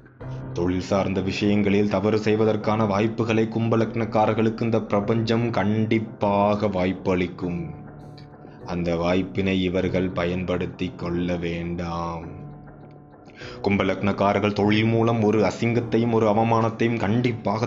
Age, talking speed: 20-39, 80 wpm